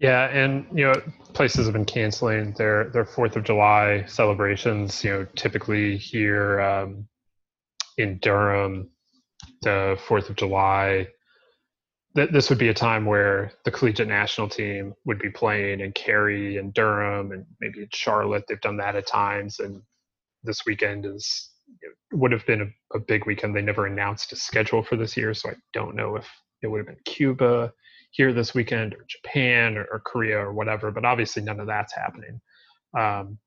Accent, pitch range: American, 100-115 Hz